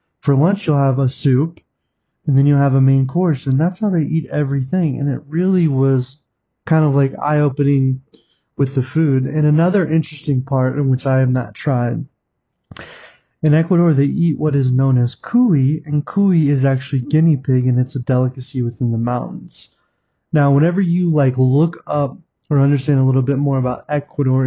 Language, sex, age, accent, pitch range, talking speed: English, male, 20-39, American, 130-150 Hz, 185 wpm